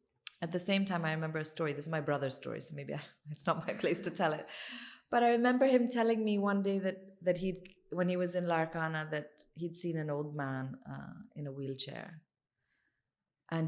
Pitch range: 145-180 Hz